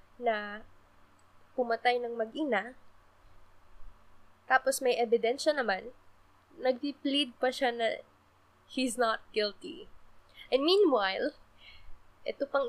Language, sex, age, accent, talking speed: Filipino, female, 20-39, native, 90 wpm